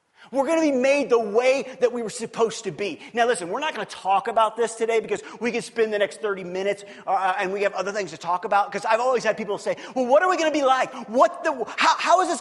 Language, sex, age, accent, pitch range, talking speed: English, male, 30-49, American, 175-250 Hz, 290 wpm